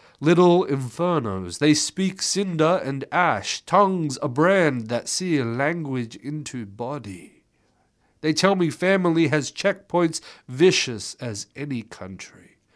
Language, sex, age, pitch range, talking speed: English, male, 30-49, 115-155 Hz, 120 wpm